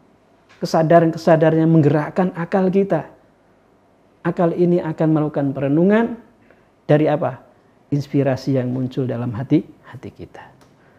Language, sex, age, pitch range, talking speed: Indonesian, male, 40-59, 125-150 Hz, 100 wpm